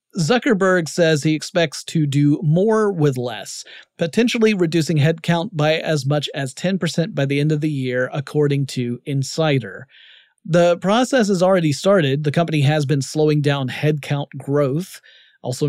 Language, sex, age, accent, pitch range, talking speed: English, male, 30-49, American, 140-170 Hz, 155 wpm